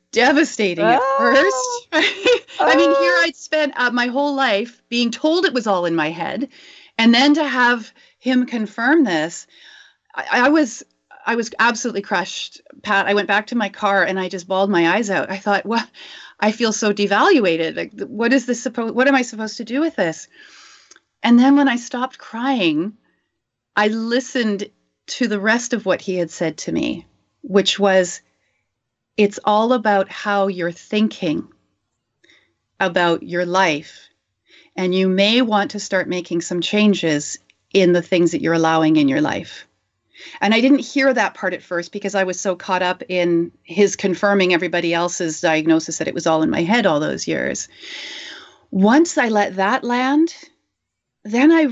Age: 40-59